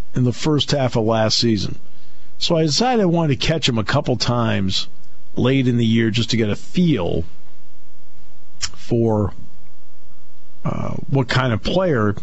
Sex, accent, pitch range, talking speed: male, American, 85-130 Hz, 160 wpm